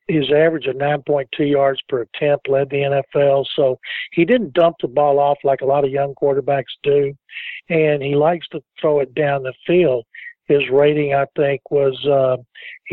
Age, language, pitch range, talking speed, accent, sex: 60-79, English, 140-165 Hz, 180 wpm, American, male